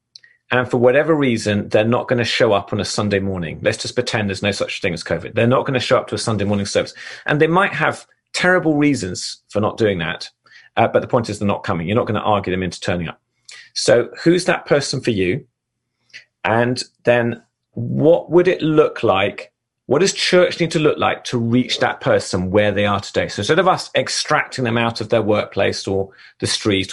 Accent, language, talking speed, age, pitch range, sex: British, English, 225 wpm, 40-59, 100-140 Hz, male